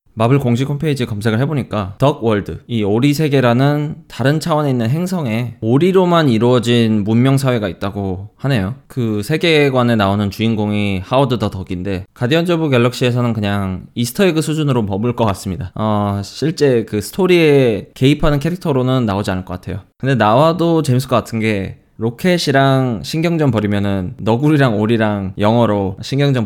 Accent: native